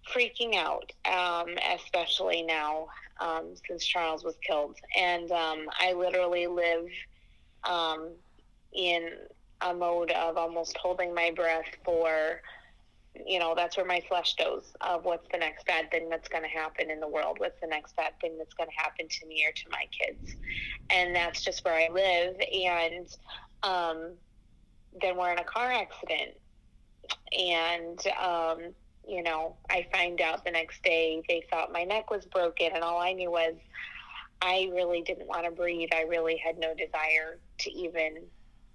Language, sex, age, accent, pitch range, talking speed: English, female, 20-39, American, 160-180 Hz, 165 wpm